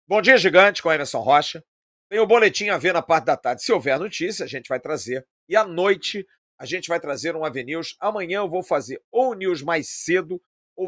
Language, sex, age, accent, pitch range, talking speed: Portuguese, male, 50-69, Brazilian, 135-180 Hz, 225 wpm